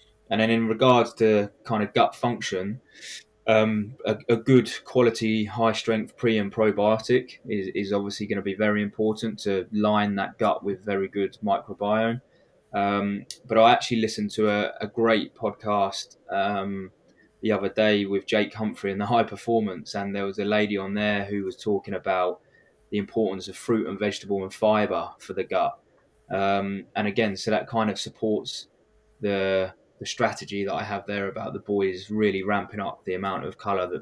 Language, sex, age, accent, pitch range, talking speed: English, male, 20-39, British, 100-110 Hz, 180 wpm